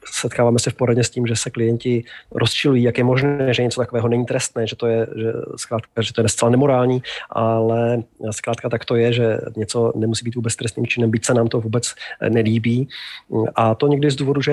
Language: Czech